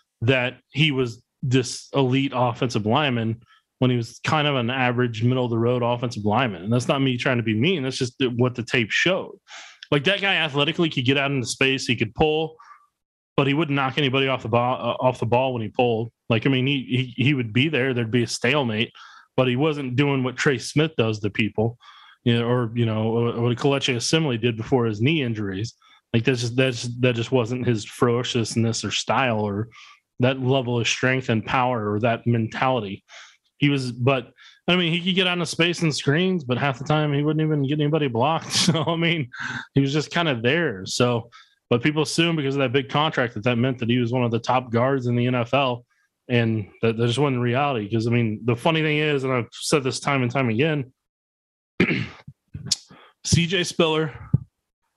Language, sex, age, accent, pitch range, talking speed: English, male, 20-39, American, 120-145 Hz, 210 wpm